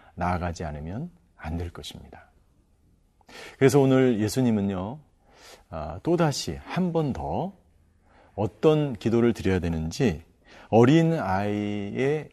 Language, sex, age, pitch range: Korean, male, 40-59, 90-140 Hz